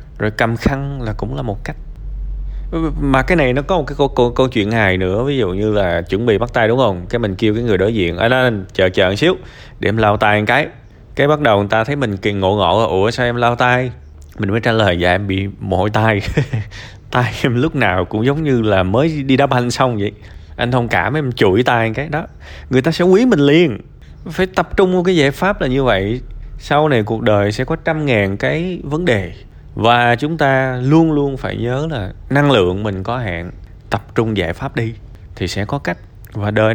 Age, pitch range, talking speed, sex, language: 20-39, 100-135 Hz, 240 wpm, male, Vietnamese